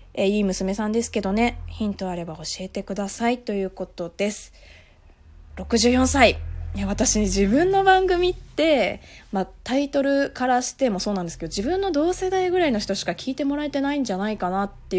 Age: 20-39